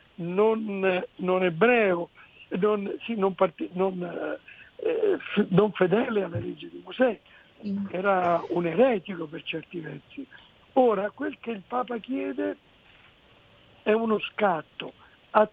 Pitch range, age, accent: 180-235 Hz, 60-79, native